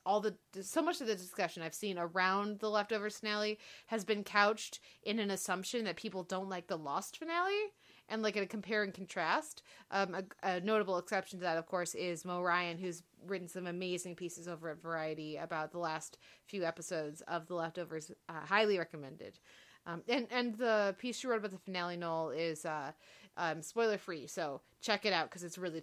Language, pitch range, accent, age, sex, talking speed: English, 175-225 Hz, American, 30-49, female, 200 wpm